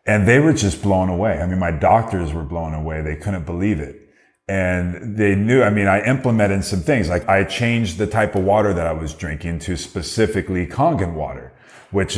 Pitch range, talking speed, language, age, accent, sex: 85-105 Hz, 205 wpm, English, 30-49, American, male